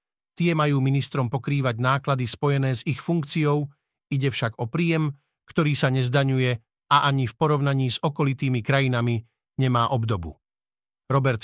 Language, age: Slovak, 50-69